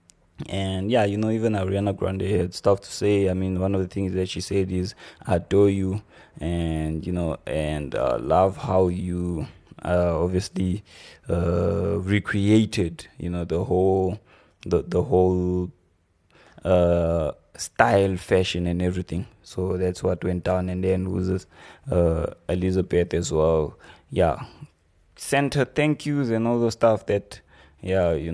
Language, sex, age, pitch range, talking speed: English, male, 20-39, 85-100 Hz, 150 wpm